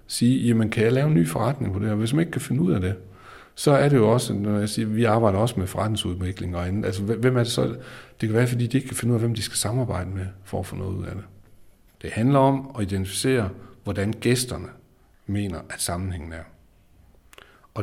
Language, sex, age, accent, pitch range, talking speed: Danish, male, 60-79, native, 95-115 Hz, 240 wpm